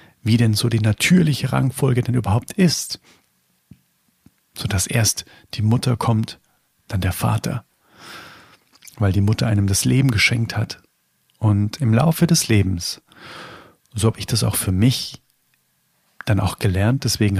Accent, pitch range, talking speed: German, 105-130 Hz, 145 wpm